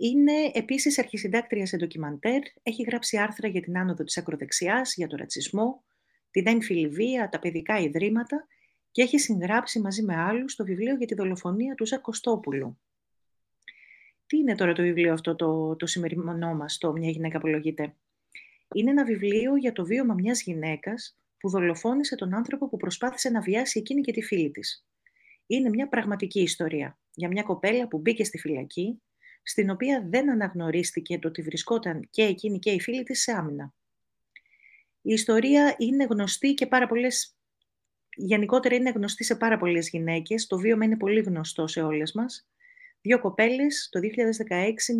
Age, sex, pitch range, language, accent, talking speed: 30-49, female, 175-245 Hz, Greek, native, 160 wpm